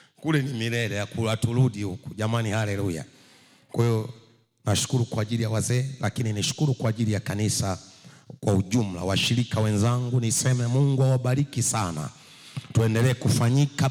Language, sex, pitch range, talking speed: English, male, 110-135 Hz, 145 wpm